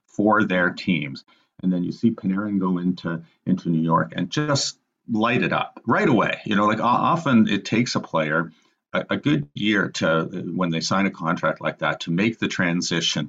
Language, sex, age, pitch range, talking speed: English, male, 40-59, 80-105 Hz, 200 wpm